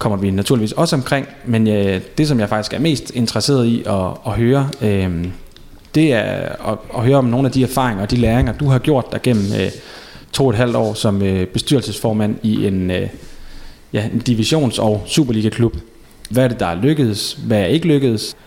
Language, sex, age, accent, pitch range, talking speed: Danish, male, 30-49, native, 105-130 Hz, 210 wpm